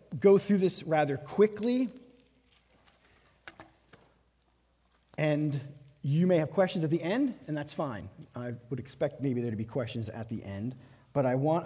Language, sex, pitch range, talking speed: English, male, 140-180 Hz, 155 wpm